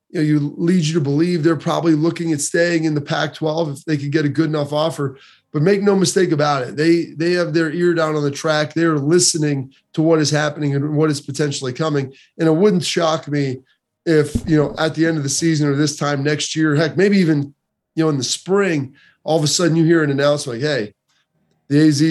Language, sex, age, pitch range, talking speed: English, male, 20-39, 145-165 Hz, 240 wpm